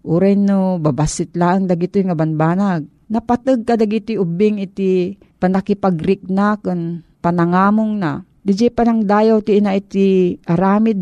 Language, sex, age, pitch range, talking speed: Filipino, female, 40-59, 175-210 Hz, 125 wpm